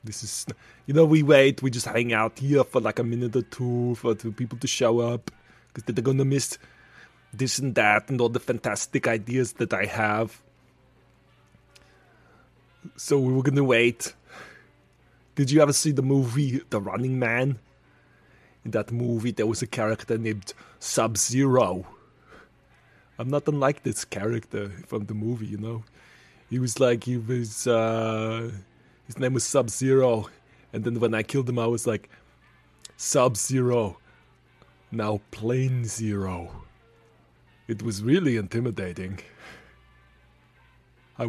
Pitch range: 110-135 Hz